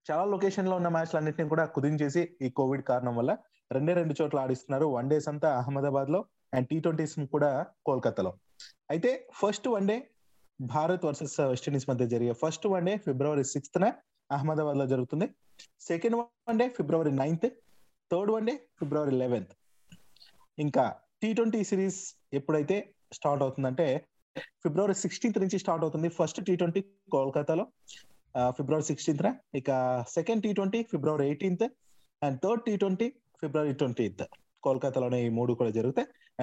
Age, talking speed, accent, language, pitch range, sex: 30-49, 145 wpm, native, Telugu, 135-190 Hz, male